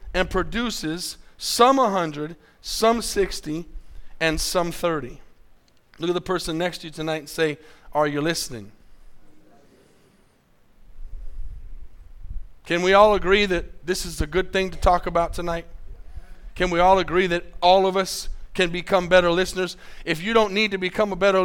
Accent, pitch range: American, 165-210 Hz